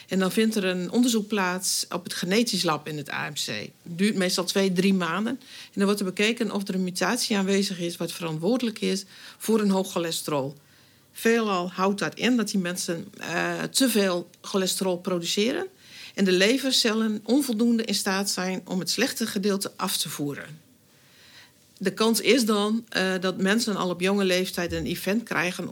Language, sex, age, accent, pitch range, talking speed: Dutch, female, 50-69, Dutch, 175-205 Hz, 180 wpm